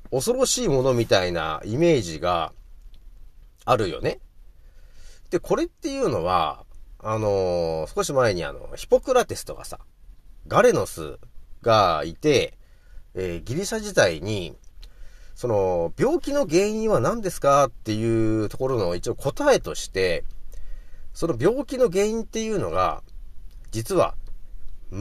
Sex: male